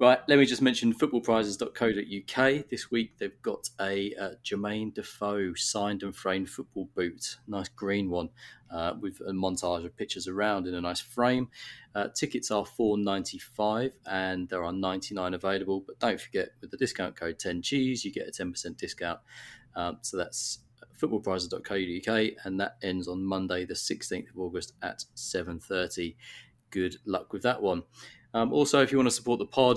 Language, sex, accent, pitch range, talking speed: English, male, British, 95-120 Hz, 170 wpm